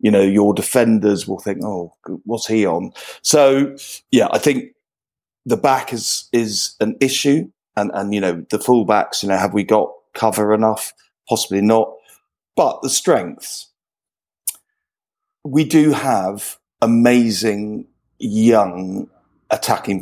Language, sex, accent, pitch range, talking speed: English, male, British, 105-140 Hz, 130 wpm